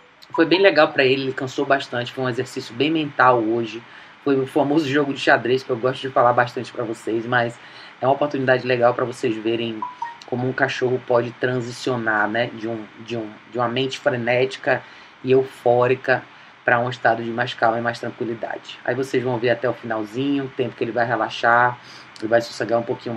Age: 20-39